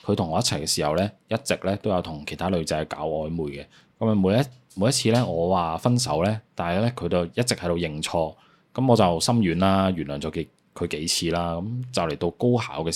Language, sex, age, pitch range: Chinese, male, 20-39, 85-110 Hz